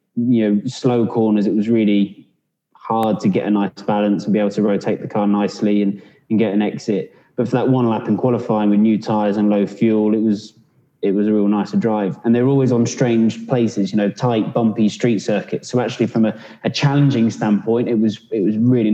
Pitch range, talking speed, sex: 105-125 Hz, 225 wpm, male